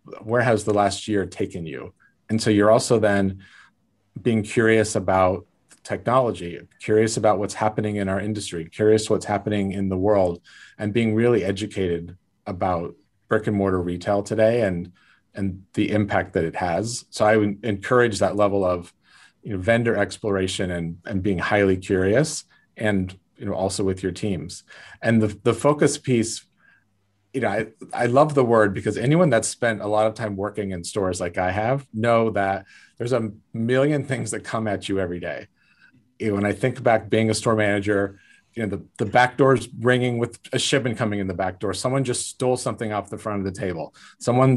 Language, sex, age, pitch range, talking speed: English, male, 30-49, 95-115 Hz, 190 wpm